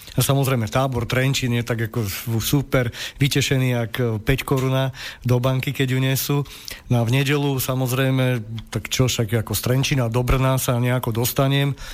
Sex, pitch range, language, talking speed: male, 120-135 Hz, Slovak, 160 wpm